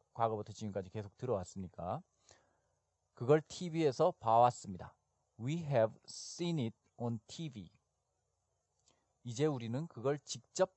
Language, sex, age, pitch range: Korean, male, 40-59, 105-145 Hz